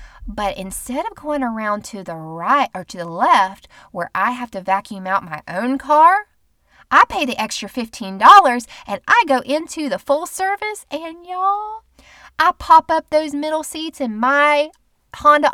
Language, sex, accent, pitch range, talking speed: English, female, American, 205-295 Hz, 170 wpm